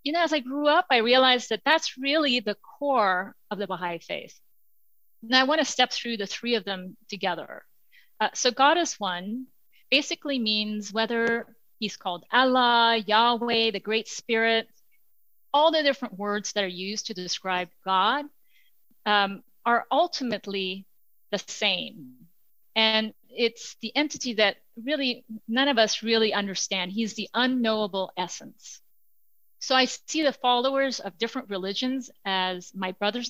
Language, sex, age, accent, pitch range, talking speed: English, female, 40-59, American, 205-260 Hz, 150 wpm